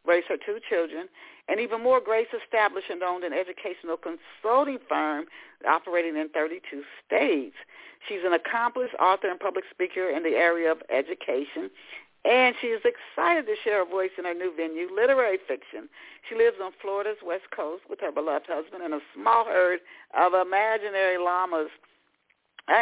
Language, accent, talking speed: English, American, 165 wpm